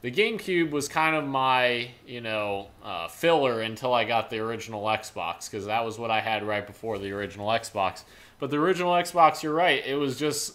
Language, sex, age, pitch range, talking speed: English, male, 20-39, 110-140 Hz, 205 wpm